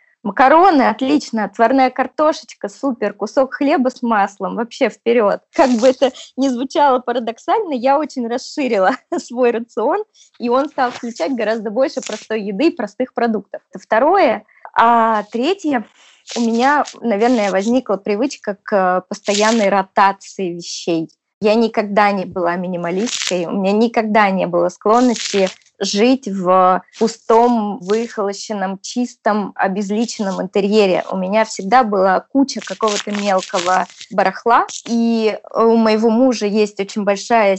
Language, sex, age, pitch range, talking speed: Russian, female, 20-39, 195-245 Hz, 125 wpm